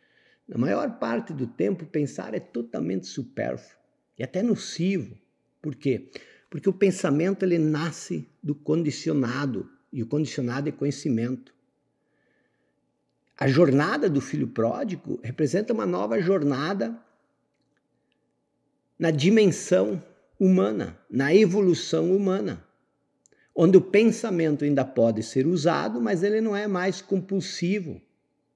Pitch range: 135-195 Hz